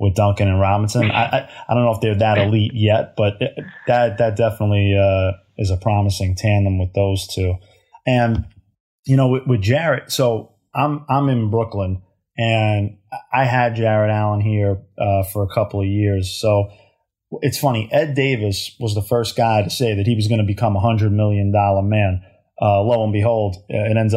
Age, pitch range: 20-39, 100-120 Hz